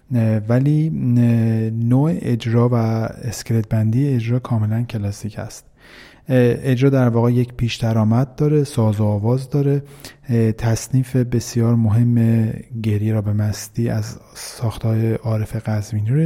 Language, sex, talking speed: Persian, male, 120 wpm